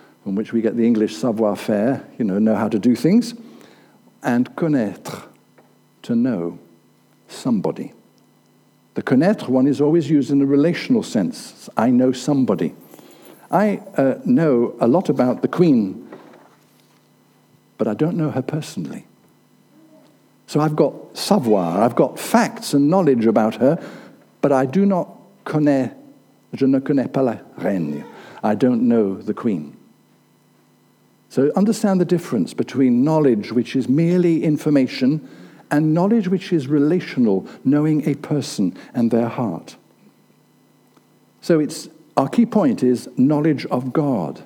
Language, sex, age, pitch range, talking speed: English, male, 60-79, 115-165 Hz, 140 wpm